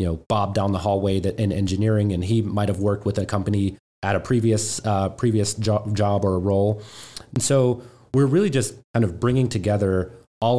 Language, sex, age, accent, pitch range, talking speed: English, male, 30-49, American, 95-115 Hz, 195 wpm